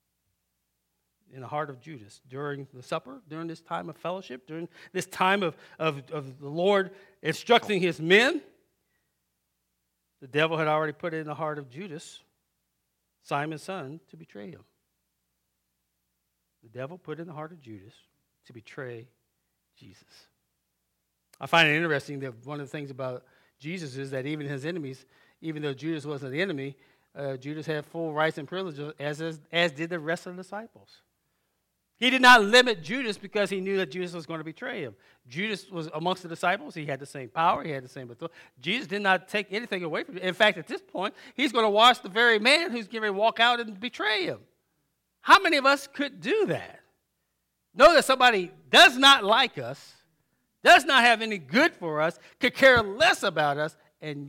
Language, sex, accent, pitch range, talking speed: English, male, American, 135-195 Hz, 190 wpm